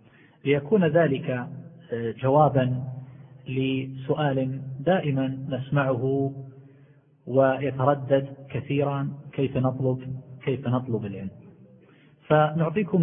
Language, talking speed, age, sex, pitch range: Arabic, 65 wpm, 40-59, male, 130-160 Hz